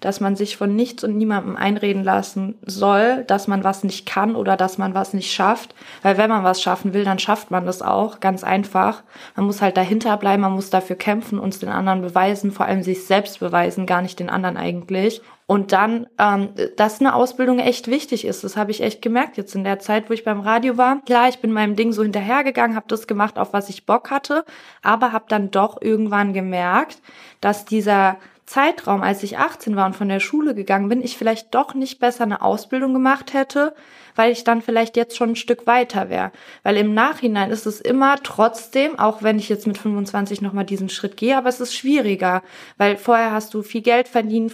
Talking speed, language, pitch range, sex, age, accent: 215 wpm, German, 195-240 Hz, female, 20-39, German